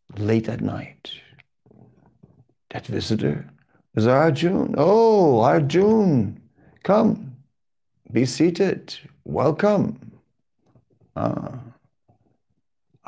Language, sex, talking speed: English, male, 65 wpm